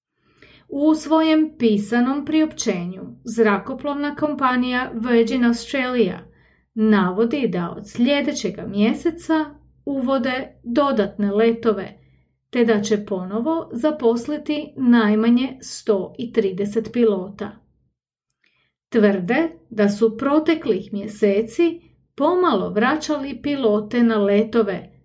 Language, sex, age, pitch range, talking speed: English, female, 40-59, 210-280 Hz, 80 wpm